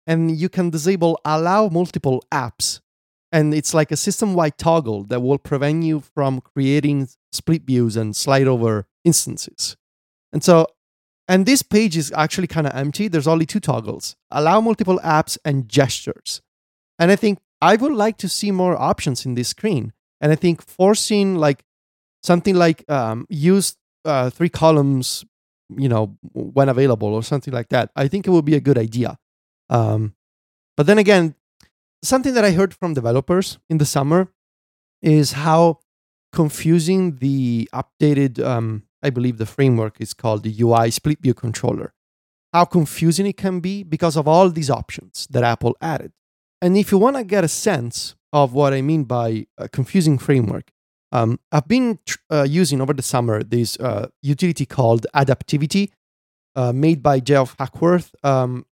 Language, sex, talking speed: English, male, 165 wpm